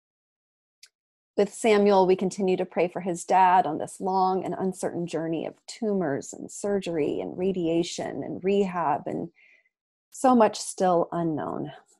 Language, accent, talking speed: English, American, 140 wpm